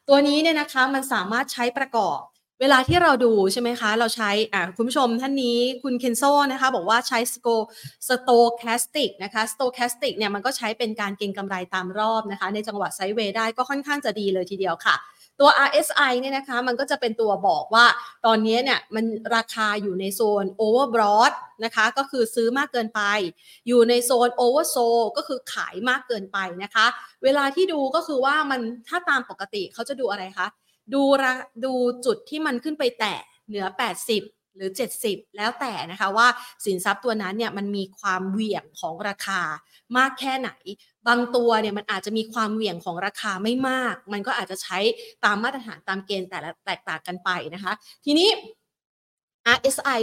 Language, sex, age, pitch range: Thai, female, 30-49, 200-255 Hz